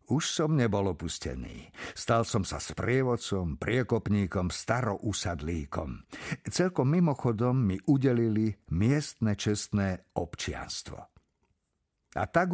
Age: 50-69